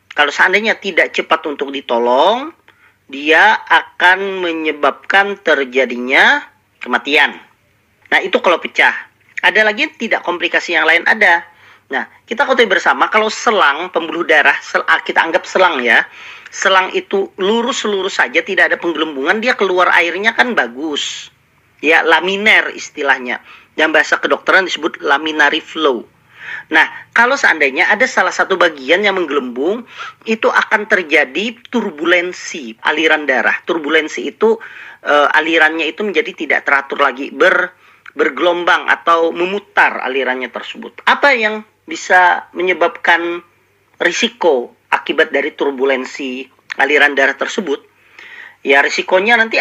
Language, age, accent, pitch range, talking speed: Indonesian, 40-59, native, 155-225 Hz, 120 wpm